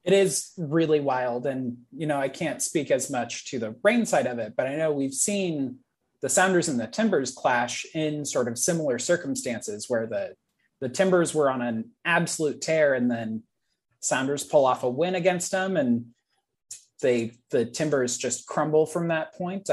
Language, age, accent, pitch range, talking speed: English, 20-39, American, 120-160 Hz, 185 wpm